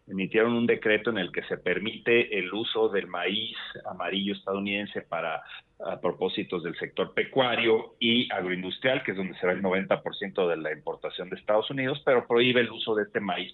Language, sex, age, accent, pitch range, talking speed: Spanish, male, 40-59, Mexican, 100-125 Hz, 185 wpm